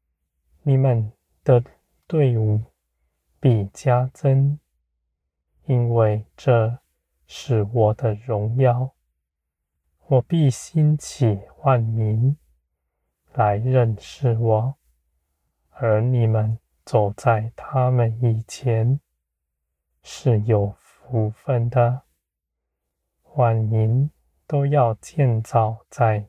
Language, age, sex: Chinese, 20-39, male